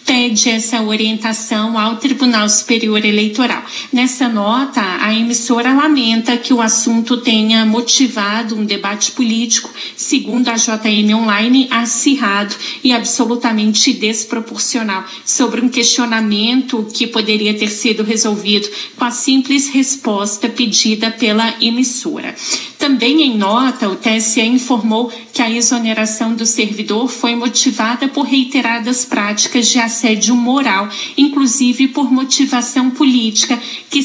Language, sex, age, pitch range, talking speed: Portuguese, female, 40-59, 220-255 Hz, 120 wpm